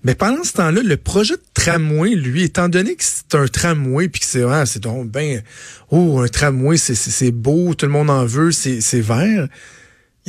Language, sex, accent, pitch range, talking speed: French, male, Canadian, 130-175 Hz, 220 wpm